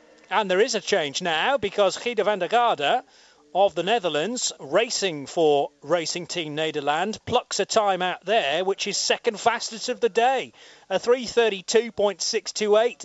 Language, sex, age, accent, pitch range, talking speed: English, male, 40-59, British, 155-220 Hz, 150 wpm